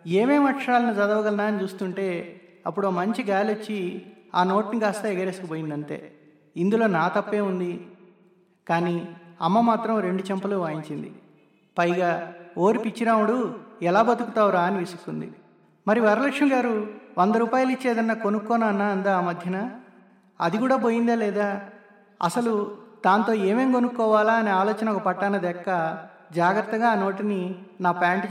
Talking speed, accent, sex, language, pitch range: 125 wpm, native, male, Telugu, 175-220 Hz